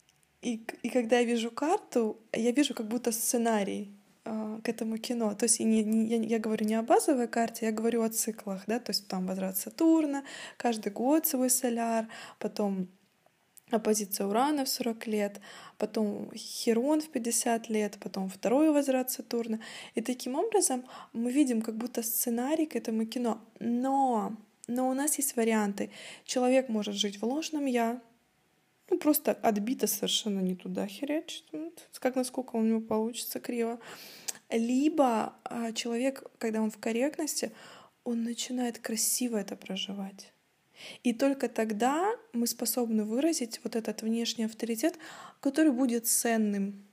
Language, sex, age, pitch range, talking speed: Russian, female, 20-39, 220-255 Hz, 150 wpm